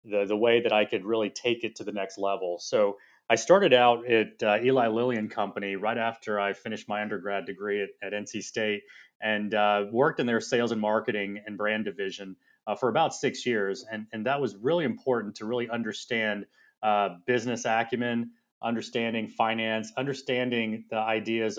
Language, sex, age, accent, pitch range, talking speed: English, male, 30-49, American, 105-125 Hz, 185 wpm